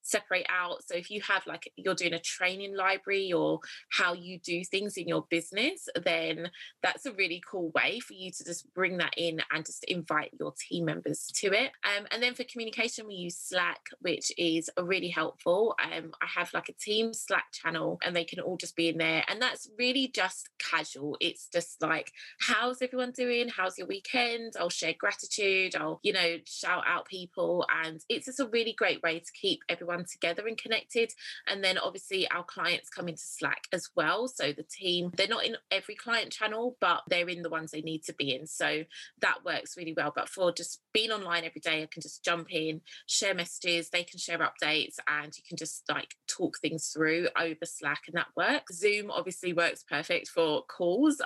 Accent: British